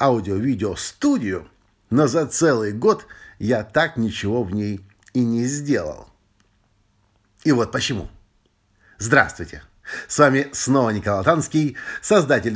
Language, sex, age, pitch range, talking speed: Russian, male, 50-69, 100-135 Hz, 110 wpm